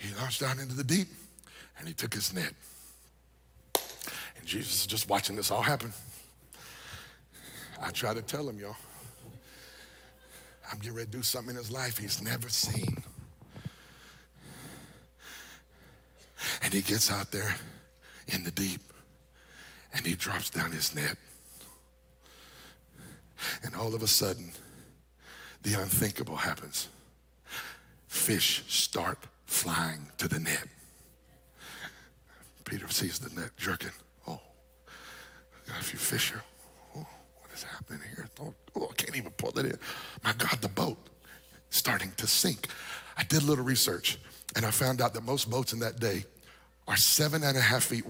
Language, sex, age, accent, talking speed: English, male, 60-79, American, 145 wpm